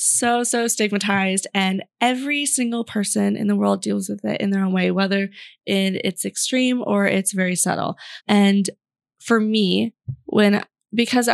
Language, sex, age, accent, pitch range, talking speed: English, female, 20-39, American, 185-210 Hz, 160 wpm